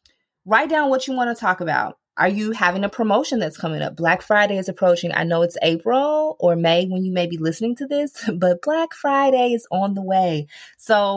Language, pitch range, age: English, 185-260 Hz, 20-39